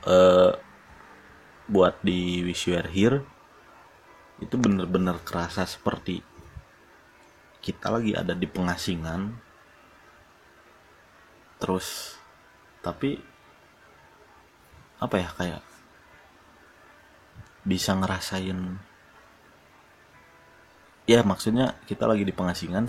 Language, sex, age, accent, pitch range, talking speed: Indonesian, male, 30-49, native, 85-95 Hz, 70 wpm